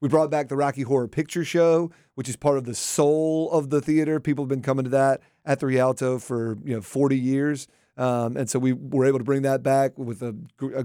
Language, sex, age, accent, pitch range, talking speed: English, male, 40-59, American, 130-155 Hz, 250 wpm